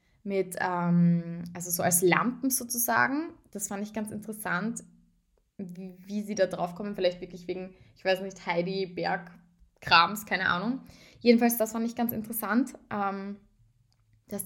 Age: 20-39